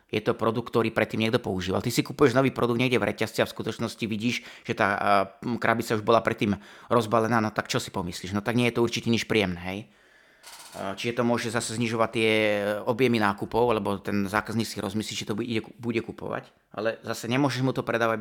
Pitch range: 110-125 Hz